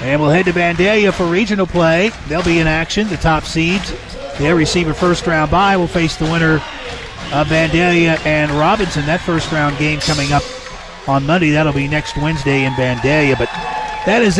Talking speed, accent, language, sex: 185 wpm, American, English, male